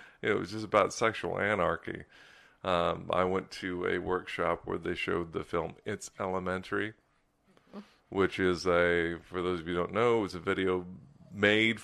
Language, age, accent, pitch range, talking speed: English, 40-59, American, 90-100 Hz, 170 wpm